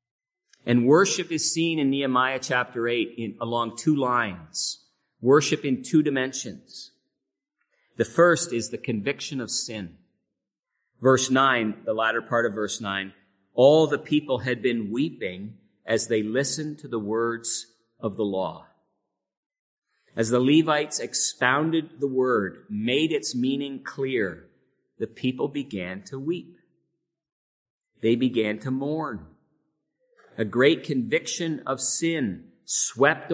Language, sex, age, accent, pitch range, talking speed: English, male, 50-69, American, 115-155 Hz, 130 wpm